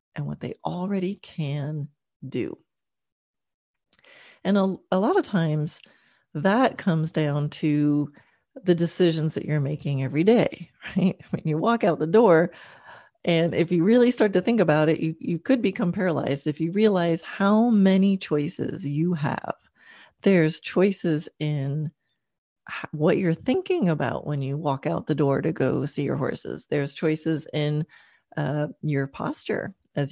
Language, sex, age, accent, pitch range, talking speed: English, female, 40-59, American, 150-200 Hz, 155 wpm